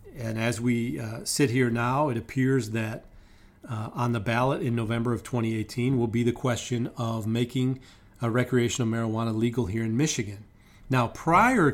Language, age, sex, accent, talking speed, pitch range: English, 40-59, male, American, 170 wpm, 110-125 Hz